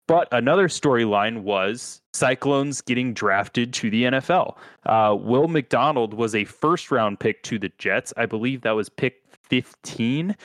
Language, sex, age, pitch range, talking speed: English, male, 20-39, 100-130 Hz, 150 wpm